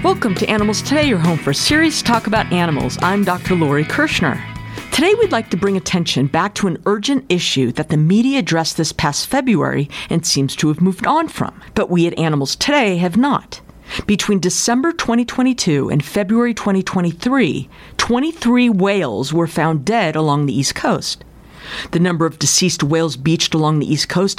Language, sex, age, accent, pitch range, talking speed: English, female, 50-69, American, 140-200 Hz, 180 wpm